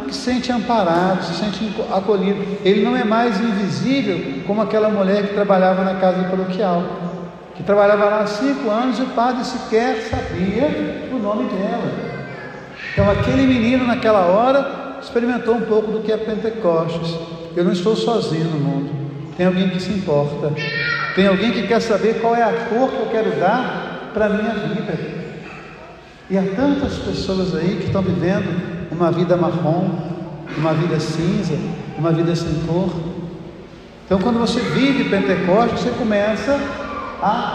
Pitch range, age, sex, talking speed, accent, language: 175-220 Hz, 50-69, male, 160 wpm, Brazilian, Portuguese